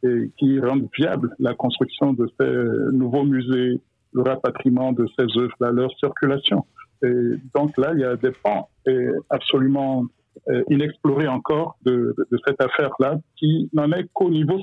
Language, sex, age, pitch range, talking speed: French, male, 60-79, 125-145 Hz, 155 wpm